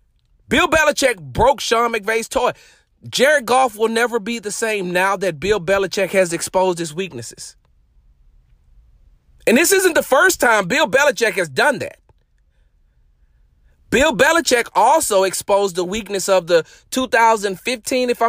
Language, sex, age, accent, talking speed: English, male, 40-59, American, 135 wpm